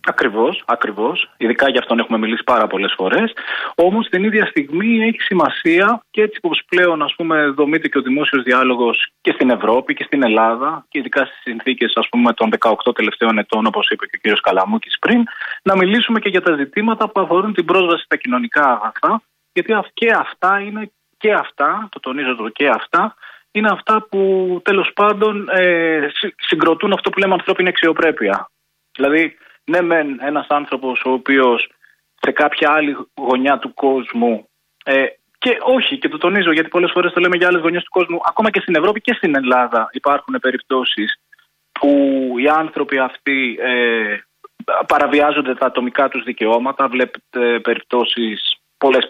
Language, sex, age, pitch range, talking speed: Greek, male, 20-39, 130-190 Hz, 160 wpm